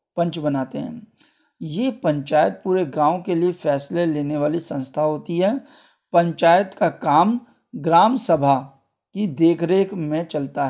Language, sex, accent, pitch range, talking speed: Hindi, male, native, 155-205 Hz, 135 wpm